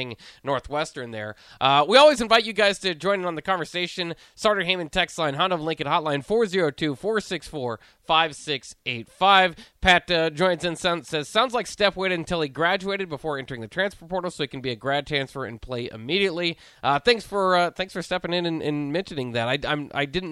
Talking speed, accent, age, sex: 195 wpm, American, 20-39, male